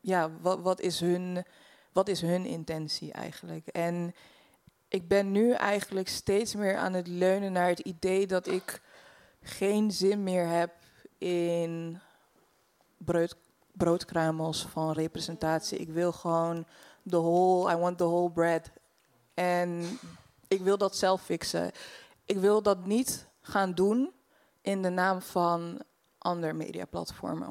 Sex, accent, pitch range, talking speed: female, Dutch, 165-195 Hz, 135 wpm